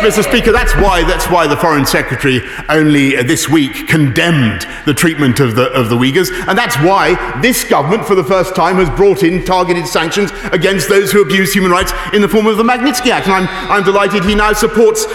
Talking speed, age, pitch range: 205 wpm, 40-59, 145-205 Hz